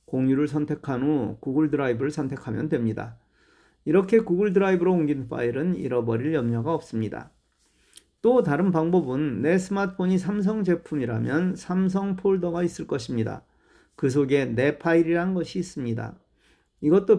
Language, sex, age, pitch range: Korean, male, 40-59, 130-180 Hz